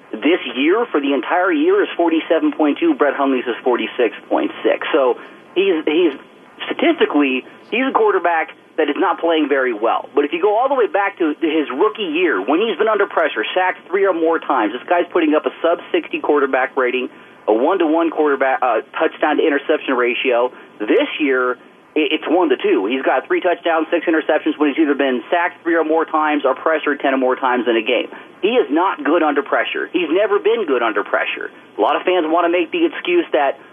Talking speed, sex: 210 wpm, male